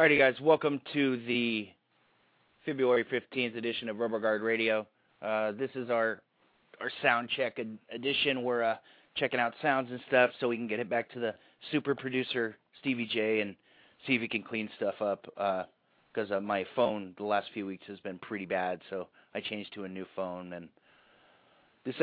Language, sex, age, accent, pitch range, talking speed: English, male, 30-49, American, 105-125 Hz, 190 wpm